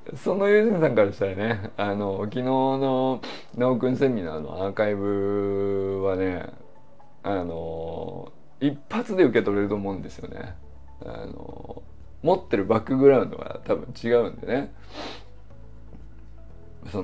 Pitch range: 100-160 Hz